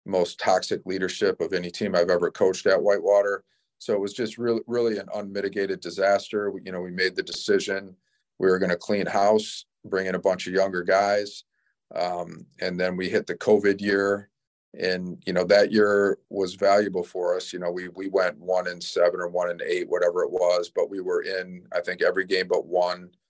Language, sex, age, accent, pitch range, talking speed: English, male, 40-59, American, 90-120 Hz, 210 wpm